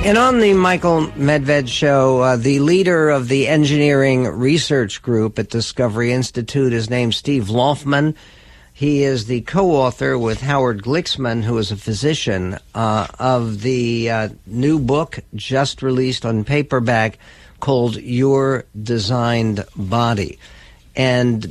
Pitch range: 110-140 Hz